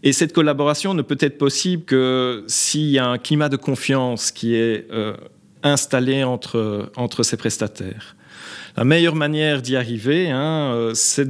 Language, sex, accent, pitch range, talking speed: English, male, French, 125-155 Hz, 160 wpm